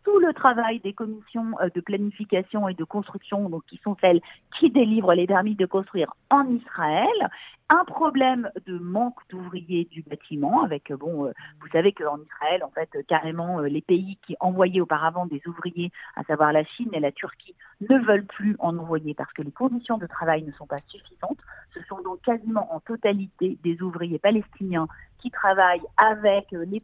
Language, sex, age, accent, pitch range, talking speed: French, female, 50-69, French, 170-230 Hz, 185 wpm